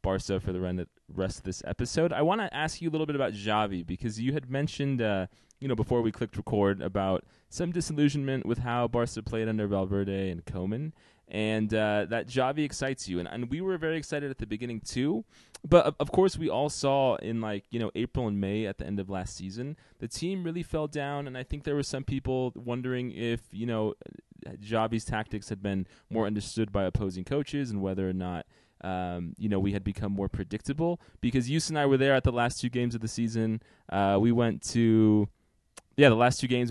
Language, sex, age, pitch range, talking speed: English, male, 20-39, 100-130 Hz, 220 wpm